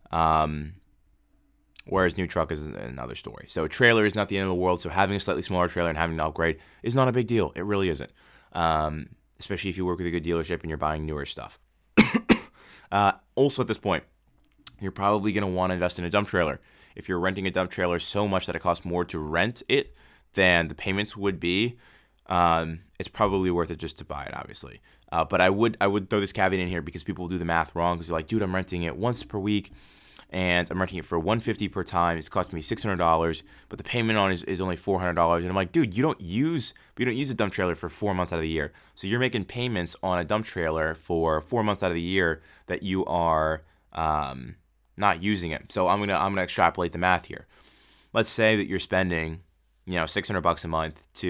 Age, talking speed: 20-39, 240 wpm